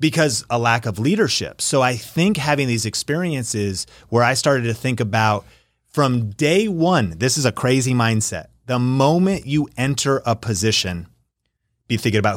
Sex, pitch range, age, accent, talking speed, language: male, 110-140 Hz, 30-49, American, 165 wpm, English